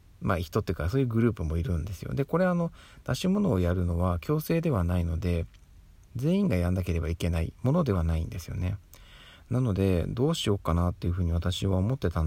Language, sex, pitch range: Japanese, male, 85-115 Hz